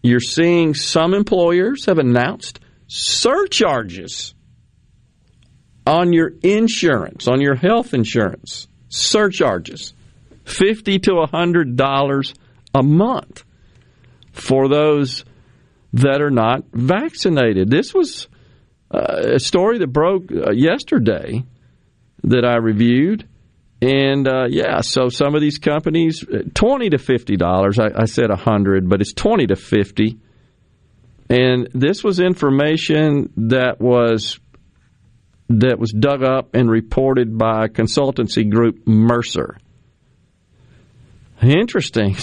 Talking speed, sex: 110 wpm, male